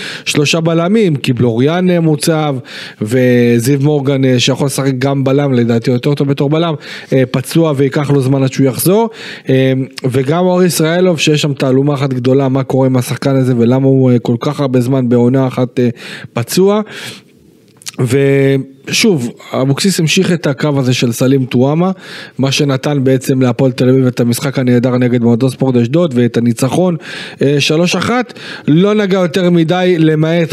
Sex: male